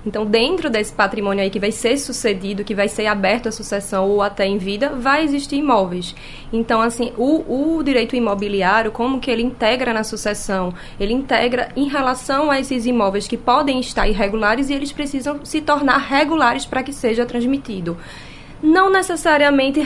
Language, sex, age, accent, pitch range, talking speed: Portuguese, female, 20-39, Brazilian, 220-285 Hz, 170 wpm